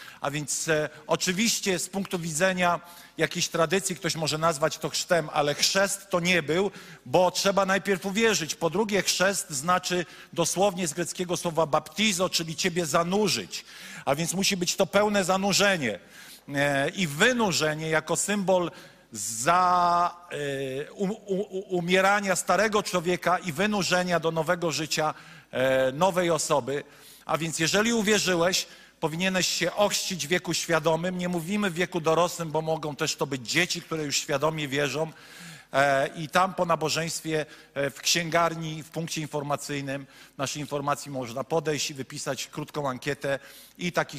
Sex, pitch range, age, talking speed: male, 150-185 Hz, 50-69, 135 wpm